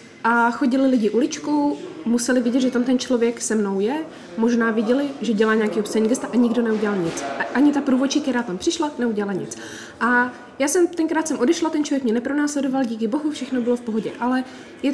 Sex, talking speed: female, 195 wpm